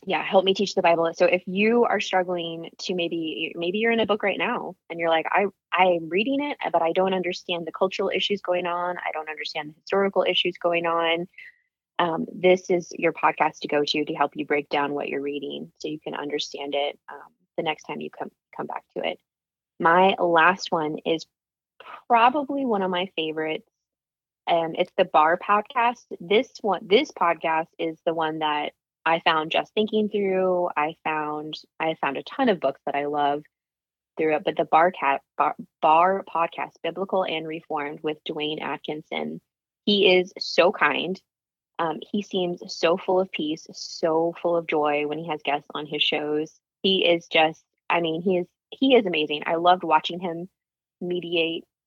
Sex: female